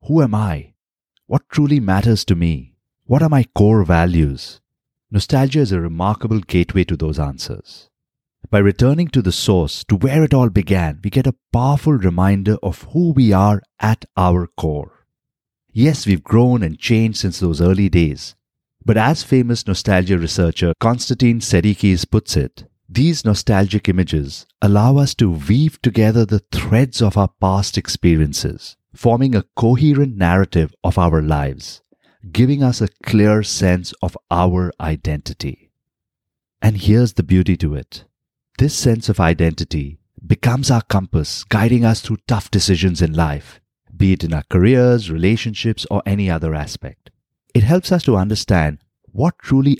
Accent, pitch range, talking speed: Indian, 90-120 Hz, 155 wpm